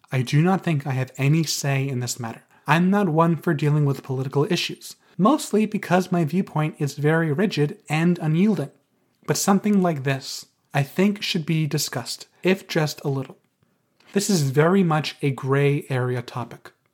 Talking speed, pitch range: 175 wpm, 140-185 Hz